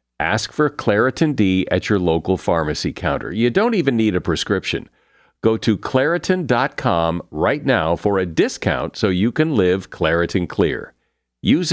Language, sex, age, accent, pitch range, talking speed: English, male, 50-69, American, 95-145 Hz, 155 wpm